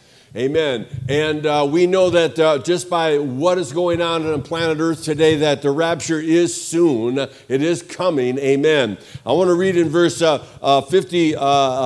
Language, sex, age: English, male, 60-79